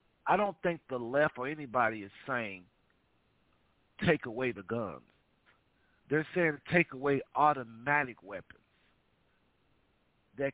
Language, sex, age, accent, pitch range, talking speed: English, male, 50-69, American, 115-150 Hz, 115 wpm